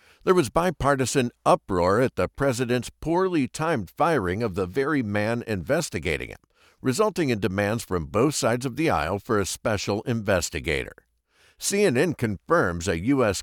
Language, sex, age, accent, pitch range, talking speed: English, male, 60-79, American, 100-145 Hz, 145 wpm